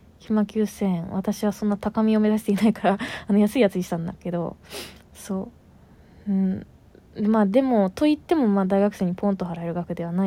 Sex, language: female, Japanese